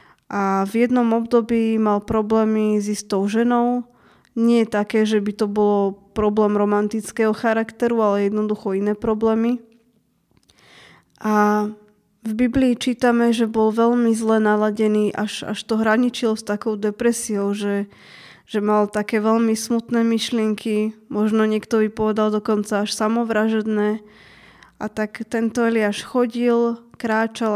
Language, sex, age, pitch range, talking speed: Slovak, female, 20-39, 210-230 Hz, 125 wpm